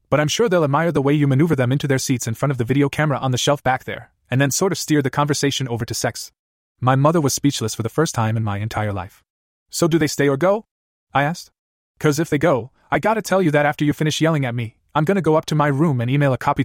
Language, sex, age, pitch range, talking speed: English, male, 20-39, 110-145 Hz, 290 wpm